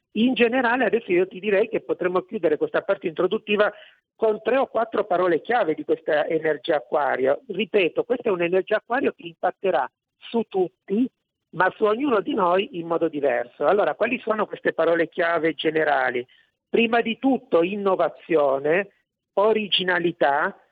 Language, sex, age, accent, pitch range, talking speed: Italian, male, 50-69, native, 160-210 Hz, 150 wpm